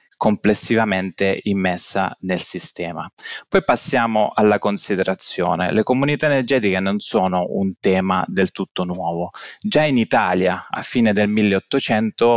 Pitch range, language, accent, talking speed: 95-115 Hz, Italian, native, 120 wpm